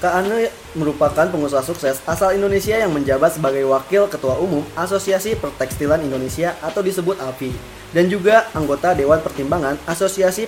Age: 20-39